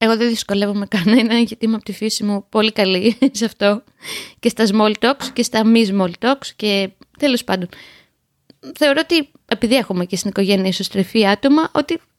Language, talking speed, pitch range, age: Greek, 175 wpm, 195-240 Hz, 20-39